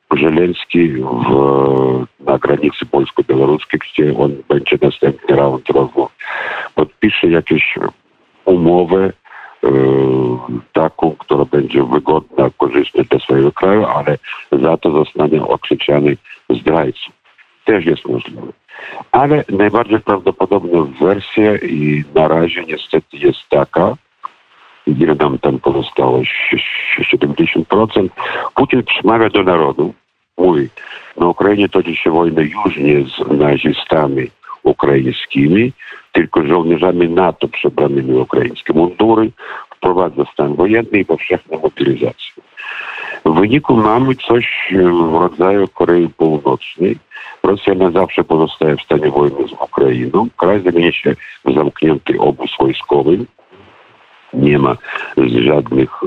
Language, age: Polish, 50-69